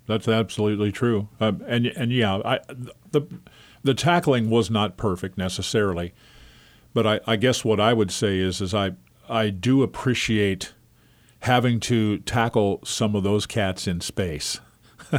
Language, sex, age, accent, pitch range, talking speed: English, male, 50-69, American, 100-115 Hz, 150 wpm